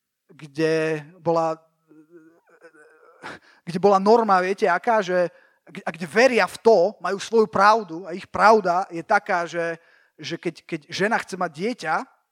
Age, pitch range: 30-49, 185-225 Hz